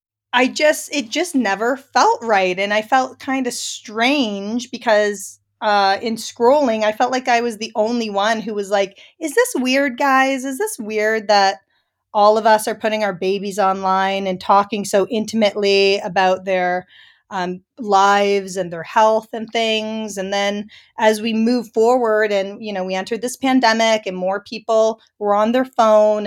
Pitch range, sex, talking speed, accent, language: 200-245 Hz, female, 175 wpm, American, English